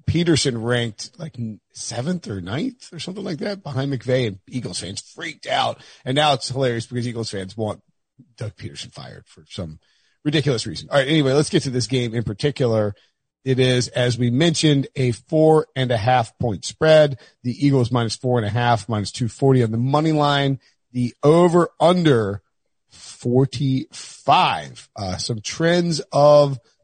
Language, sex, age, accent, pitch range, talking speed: English, male, 40-59, American, 120-155 Hz, 170 wpm